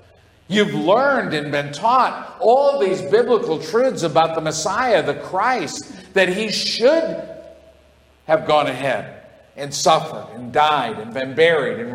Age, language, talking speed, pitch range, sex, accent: 50-69, English, 140 wpm, 150-225 Hz, male, American